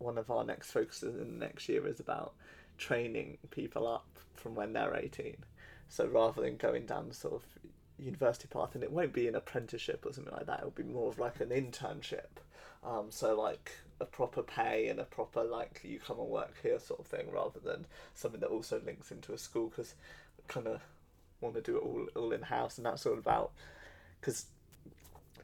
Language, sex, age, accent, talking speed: English, male, 20-39, British, 205 wpm